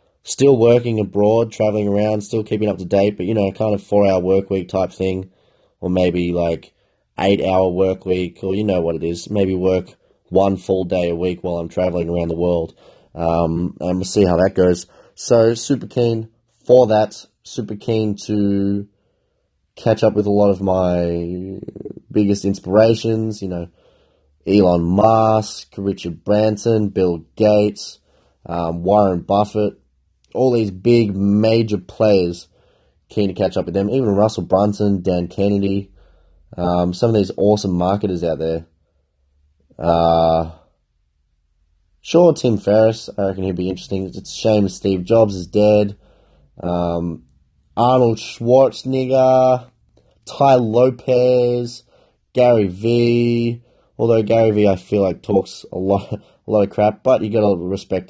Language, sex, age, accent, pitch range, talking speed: English, male, 20-39, Australian, 90-110 Hz, 150 wpm